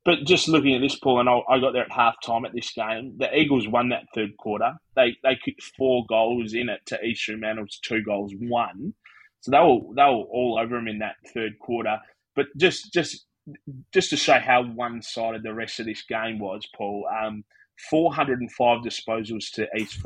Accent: Australian